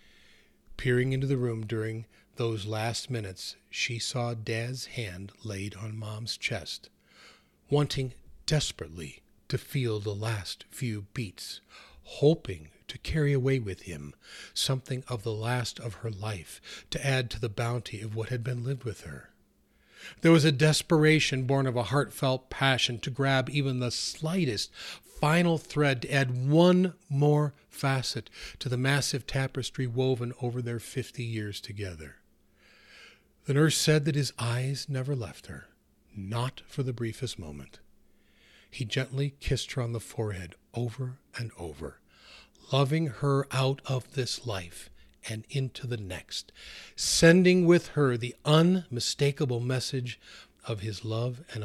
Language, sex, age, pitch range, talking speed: English, male, 40-59, 110-135 Hz, 145 wpm